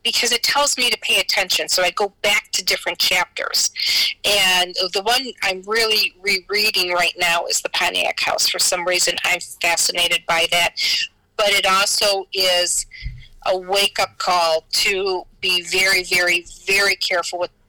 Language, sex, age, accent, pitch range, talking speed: English, female, 40-59, American, 175-210 Hz, 160 wpm